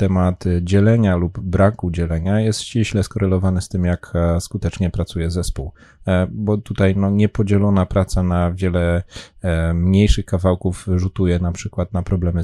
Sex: male